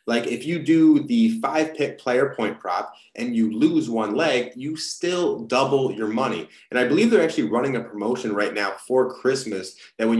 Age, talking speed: 30-49, 195 wpm